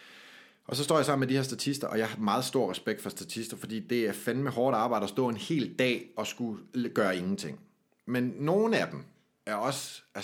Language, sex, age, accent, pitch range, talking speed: Danish, male, 30-49, native, 105-140 Hz, 230 wpm